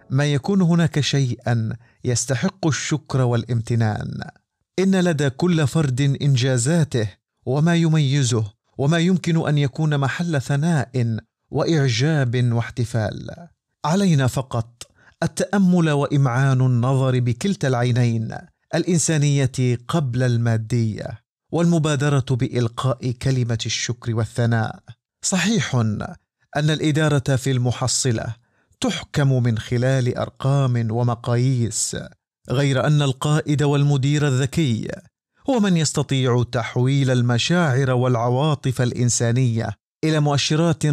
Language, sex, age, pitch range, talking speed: Arabic, male, 50-69, 120-150 Hz, 90 wpm